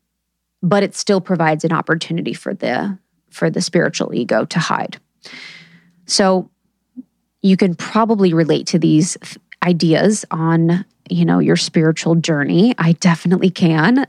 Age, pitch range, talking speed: 20-39, 165-205 Hz, 135 wpm